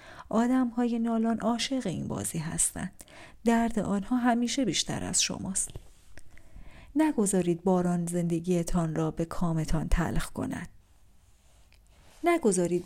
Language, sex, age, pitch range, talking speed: Persian, female, 40-59, 175-235 Hz, 105 wpm